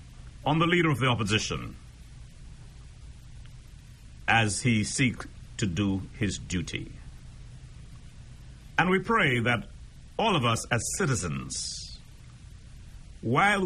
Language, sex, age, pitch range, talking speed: English, male, 60-79, 100-145 Hz, 100 wpm